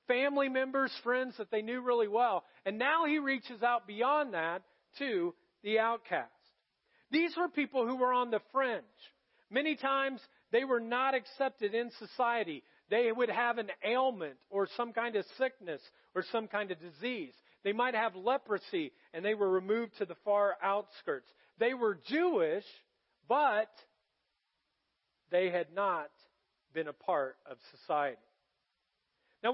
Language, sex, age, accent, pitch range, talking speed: English, male, 40-59, American, 220-290 Hz, 150 wpm